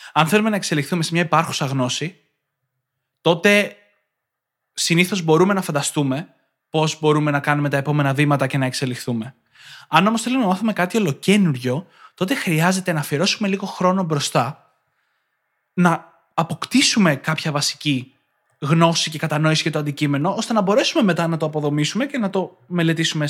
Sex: male